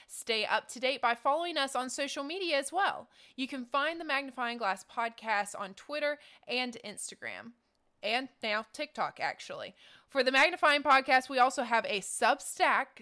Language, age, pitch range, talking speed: English, 20-39, 215-270 Hz, 165 wpm